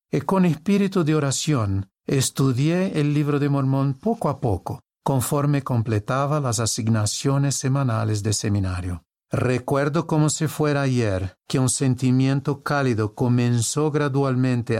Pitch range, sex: 120-150 Hz, male